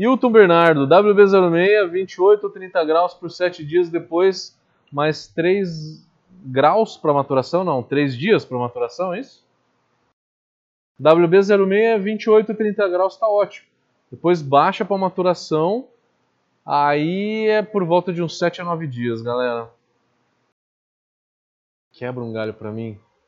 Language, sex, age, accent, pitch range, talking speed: Portuguese, male, 20-39, Brazilian, 135-205 Hz, 130 wpm